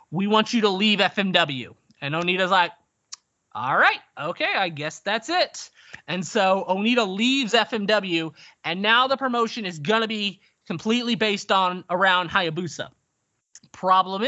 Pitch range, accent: 185-230 Hz, American